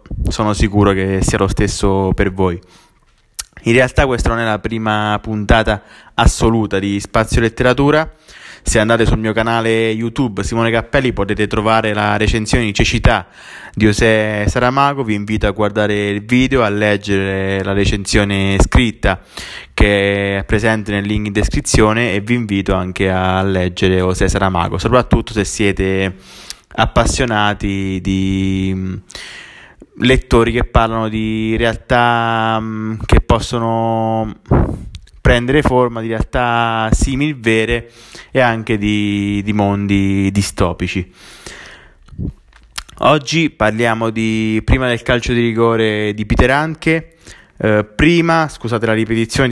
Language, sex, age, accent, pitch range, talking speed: Italian, male, 20-39, native, 100-120 Hz, 125 wpm